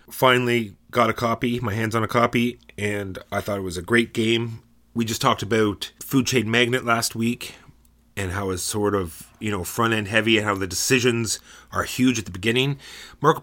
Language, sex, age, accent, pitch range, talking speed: English, male, 30-49, American, 95-115 Hz, 205 wpm